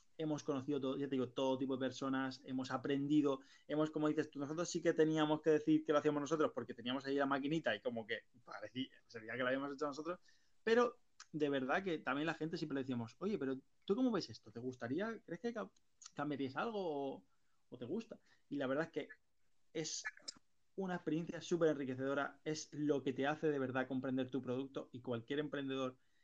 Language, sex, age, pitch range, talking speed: Spanish, male, 20-39, 135-170 Hz, 205 wpm